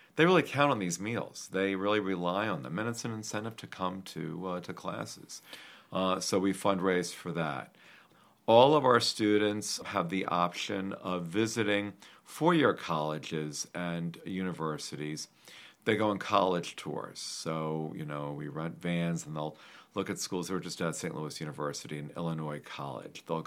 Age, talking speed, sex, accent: 50-69, 170 wpm, male, American